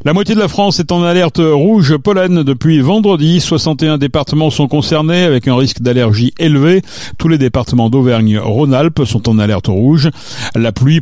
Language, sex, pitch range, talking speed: French, male, 120-165 Hz, 170 wpm